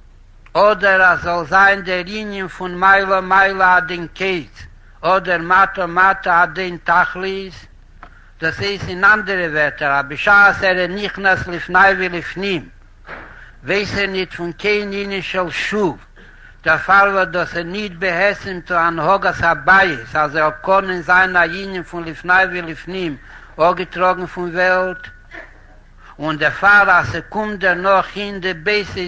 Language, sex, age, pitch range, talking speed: Hebrew, male, 60-79, 170-200 Hz, 135 wpm